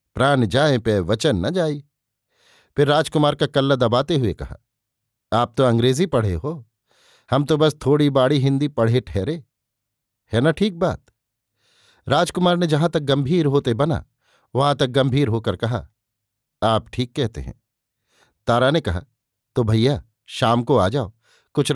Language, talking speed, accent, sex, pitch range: Hindi, 155 wpm, native, male, 115-145 Hz